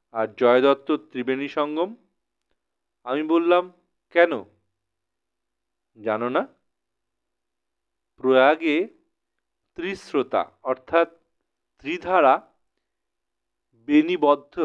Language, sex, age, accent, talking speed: Bengali, male, 40-59, native, 55 wpm